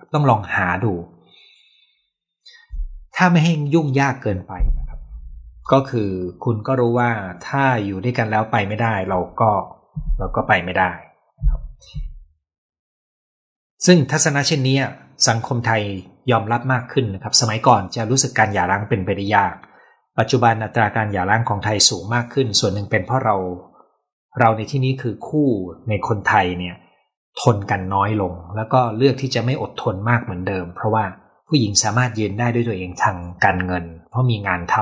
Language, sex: Thai, male